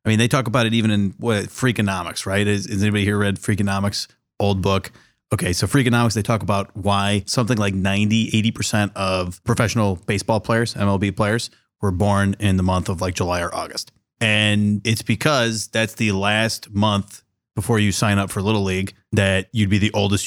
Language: English